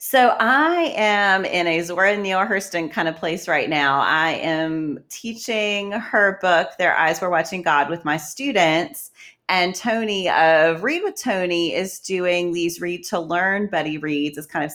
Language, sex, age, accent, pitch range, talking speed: English, female, 30-49, American, 160-210 Hz, 175 wpm